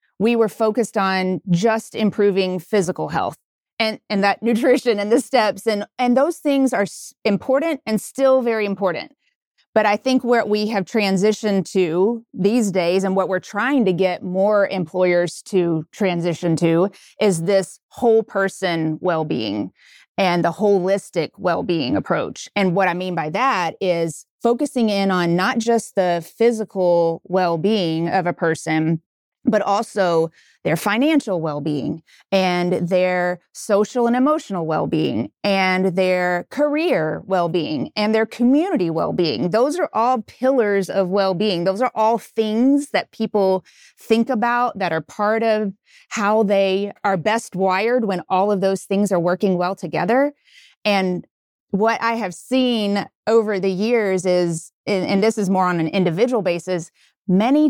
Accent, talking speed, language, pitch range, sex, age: American, 155 wpm, English, 180-225 Hz, female, 30-49